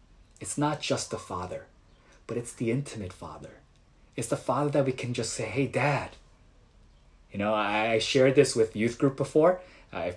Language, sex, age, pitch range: Korean, male, 20-39, 110-150 Hz